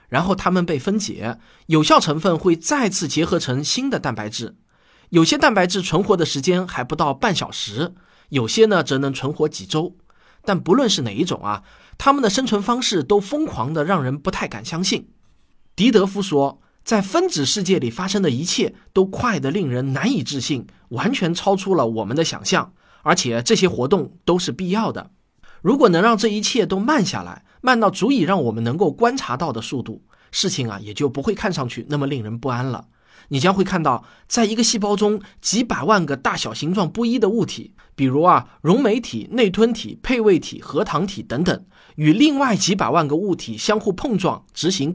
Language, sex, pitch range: Chinese, male, 145-210 Hz